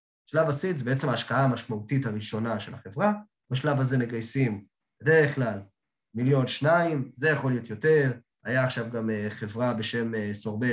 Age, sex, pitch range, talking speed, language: 20-39, male, 115-150 Hz, 140 wpm, Hebrew